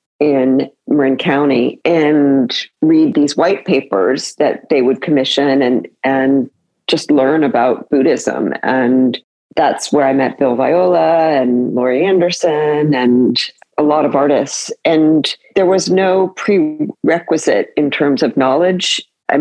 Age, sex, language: 40-59, female, English